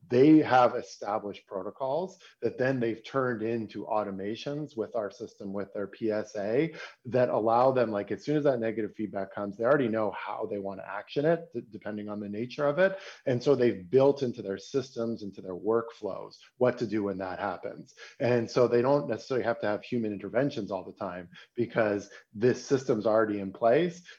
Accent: American